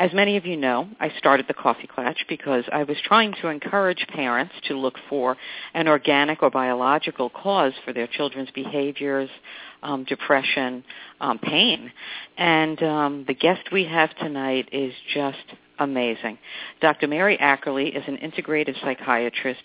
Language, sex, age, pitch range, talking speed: English, female, 50-69, 135-160 Hz, 155 wpm